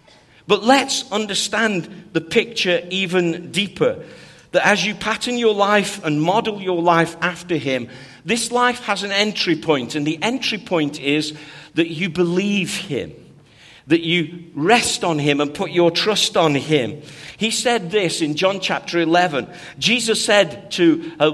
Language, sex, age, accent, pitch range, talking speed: English, male, 50-69, British, 165-225 Hz, 155 wpm